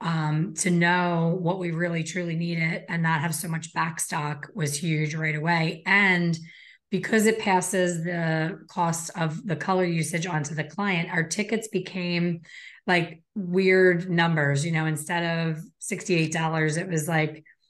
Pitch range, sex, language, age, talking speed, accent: 160-185 Hz, female, English, 30-49, 155 wpm, American